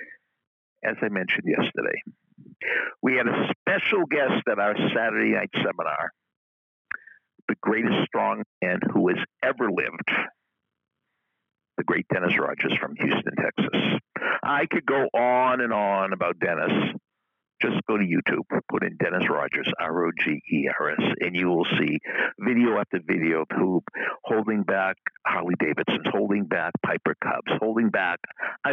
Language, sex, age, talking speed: English, male, 60-79, 150 wpm